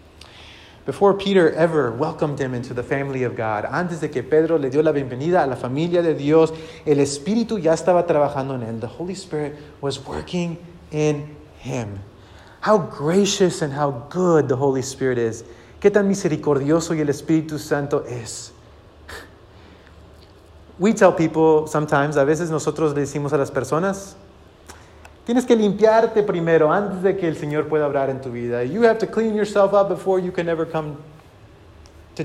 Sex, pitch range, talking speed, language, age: male, 135-195 Hz, 170 wpm, English, 30-49